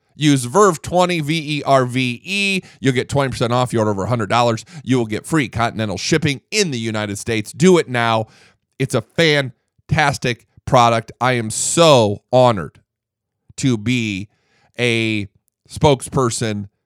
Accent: American